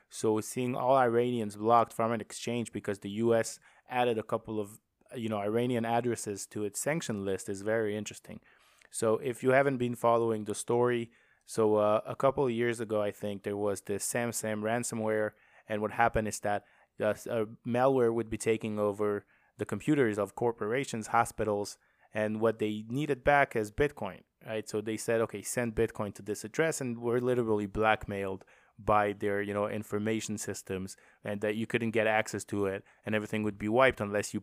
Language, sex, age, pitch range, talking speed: English, male, 20-39, 105-120 Hz, 185 wpm